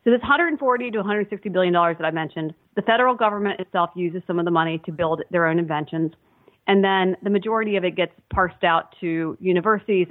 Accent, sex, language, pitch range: American, female, English, 170-200 Hz